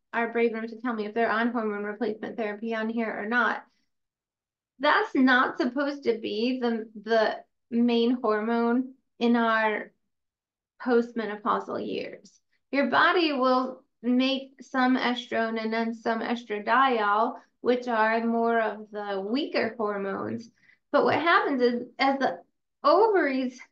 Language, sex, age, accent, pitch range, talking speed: English, female, 20-39, American, 225-265 Hz, 135 wpm